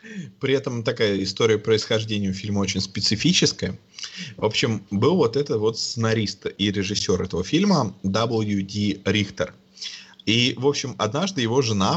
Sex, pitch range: male, 105-135 Hz